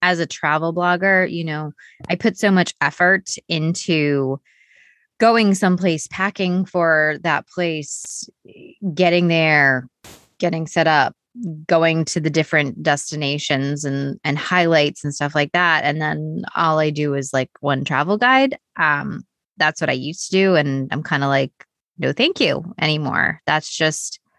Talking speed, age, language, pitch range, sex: 155 wpm, 20-39, English, 145-175 Hz, female